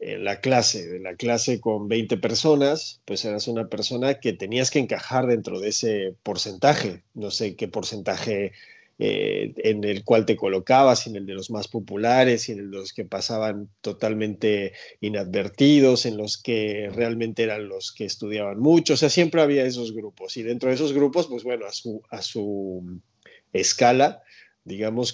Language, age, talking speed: Spanish, 40-59, 175 wpm